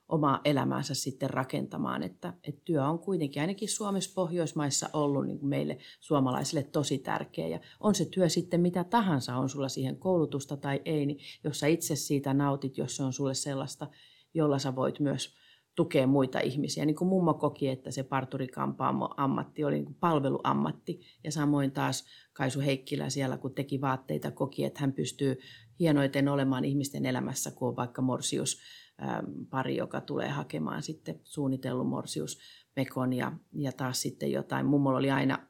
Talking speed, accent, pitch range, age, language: 160 wpm, native, 135-155 Hz, 40-59, Finnish